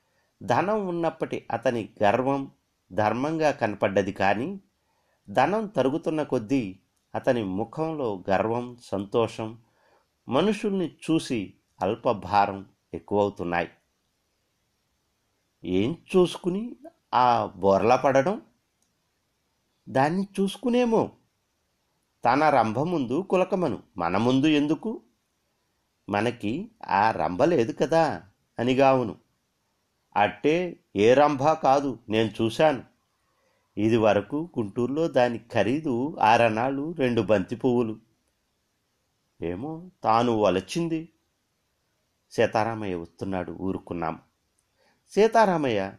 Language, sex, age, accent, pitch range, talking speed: Telugu, male, 50-69, native, 105-160 Hz, 75 wpm